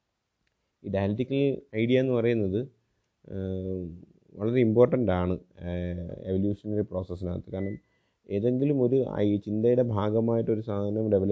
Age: 30-49